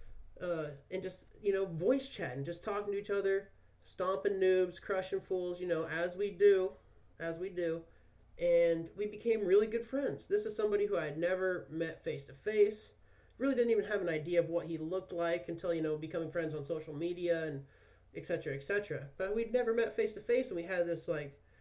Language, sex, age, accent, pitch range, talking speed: English, male, 30-49, American, 160-200 Hz, 215 wpm